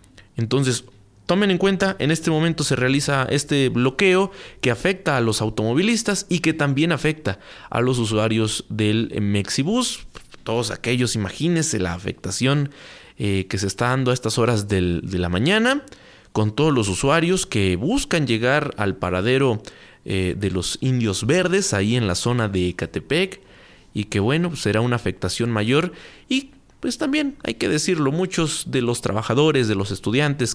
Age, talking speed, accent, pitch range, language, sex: 30-49, 155 wpm, Mexican, 105-170 Hz, Spanish, male